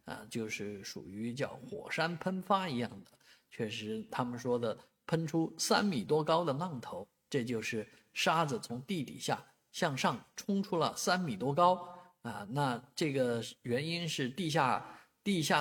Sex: male